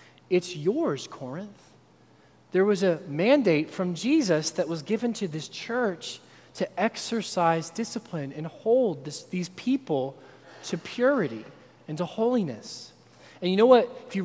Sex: male